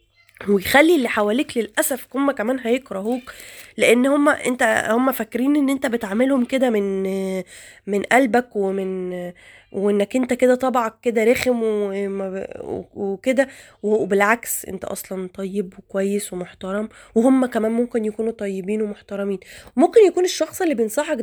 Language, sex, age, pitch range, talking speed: Arabic, female, 20-39, 210-275 Hz, 125 wpm